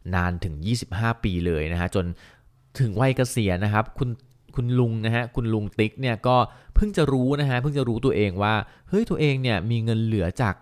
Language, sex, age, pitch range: Thai, male, 20-39, 95-125 Hz